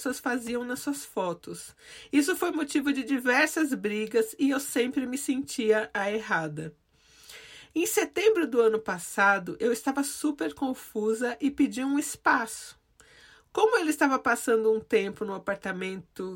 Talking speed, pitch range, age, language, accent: 150 wpm, 225-295 Hz, 40-59, Portuguese, Brazilian